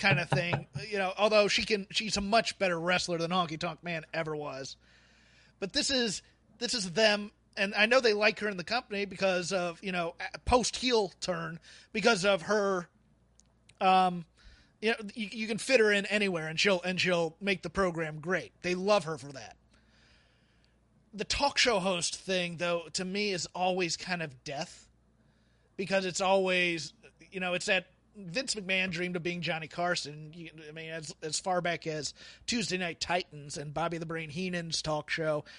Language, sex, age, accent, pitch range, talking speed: English, male, 30-49, American, 165-200 Hz, 185 wpm